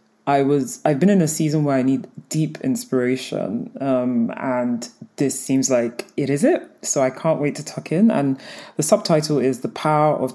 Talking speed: 195 wpm